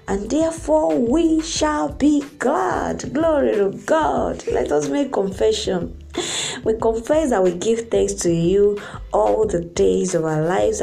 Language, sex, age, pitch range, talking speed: English, female, 20-39, 165-220 Hz, 150 wpm